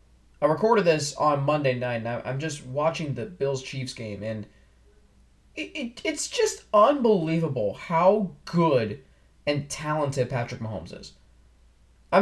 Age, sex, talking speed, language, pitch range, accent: 20-39, male, 135 wpm, English, 125-190 Hz, American